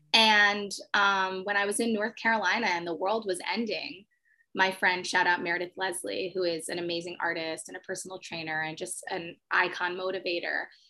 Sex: female